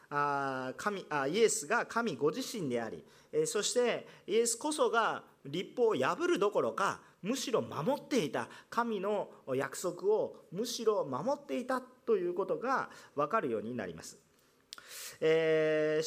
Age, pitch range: 40-59, 205-335 Hz